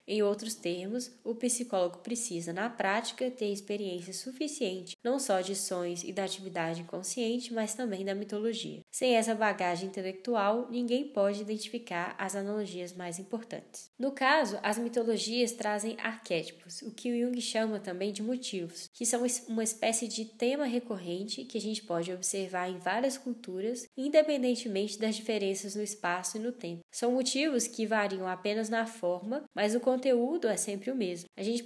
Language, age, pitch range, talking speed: Portuguese, 10-29, 190-235 Hz, 165 wpm